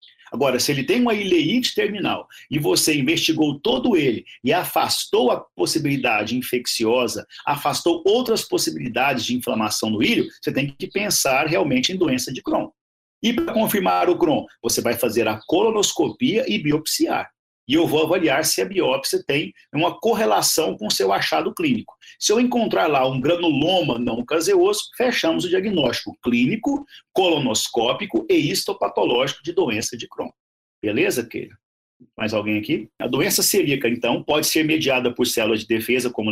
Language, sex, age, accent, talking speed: Portuguese, male, 50-69, Brazilian, 160 wpm